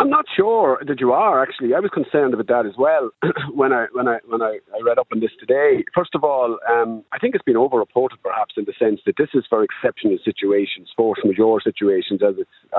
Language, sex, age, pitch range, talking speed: English, male, 30-49, 105-170 Hz, 230 wpm